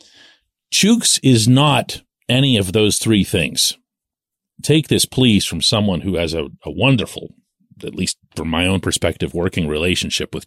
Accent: American